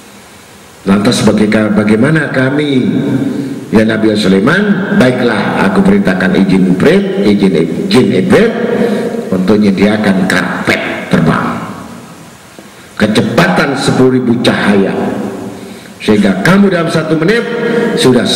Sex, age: male, 50-69